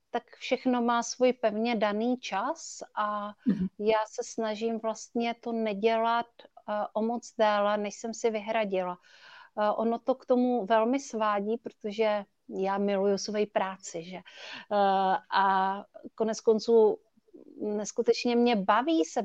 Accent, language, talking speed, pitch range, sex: native, Czech, 125 wpm, 200-230 Hz, female